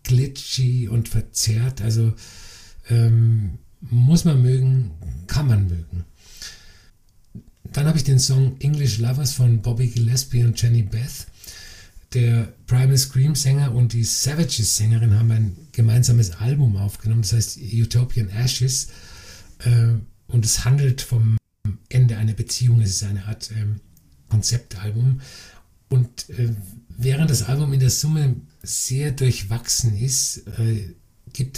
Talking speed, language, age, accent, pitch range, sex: 130 wpm, German, 50-69, German, 105-125 Hz, male